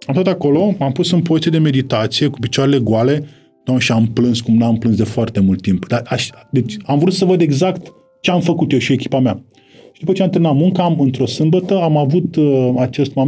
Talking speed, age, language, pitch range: 215 wpm, 20-39, Romanian, 125-155 Hz